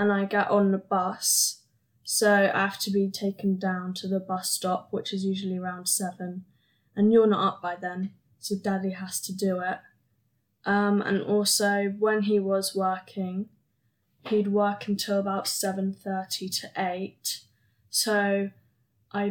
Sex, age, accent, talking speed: female, 10-29, British, 160 wpm